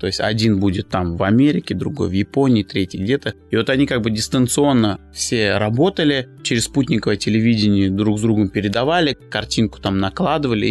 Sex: male